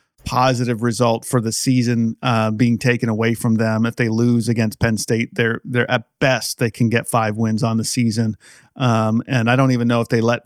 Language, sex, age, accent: English, male, 40-59, American